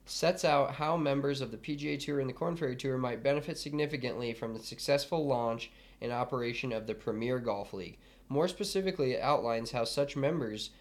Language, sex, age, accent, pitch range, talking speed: English, male, 10-29, American, 115-140 Hz, 190 wpm